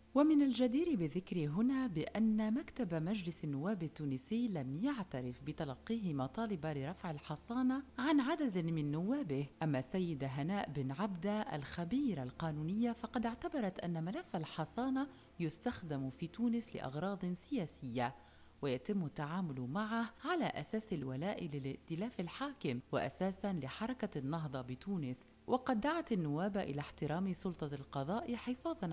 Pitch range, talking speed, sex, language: 150-230 Hz, 115 wpm, female, Arabic